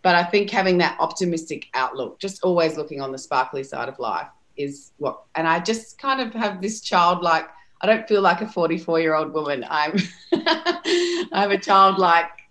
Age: 30-49